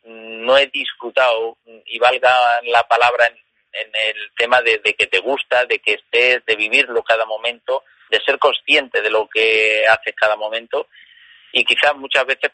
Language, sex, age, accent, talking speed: Spanish, male, 40-59, Spanish, 170 wpm